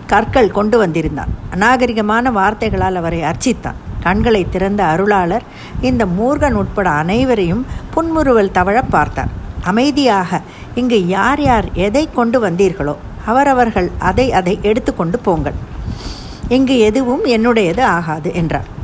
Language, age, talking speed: Tamil, 50-69, 110 wpm